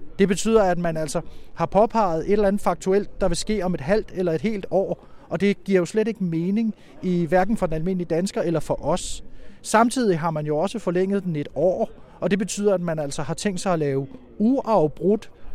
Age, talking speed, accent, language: 30-49, 225 wpm, native, Danish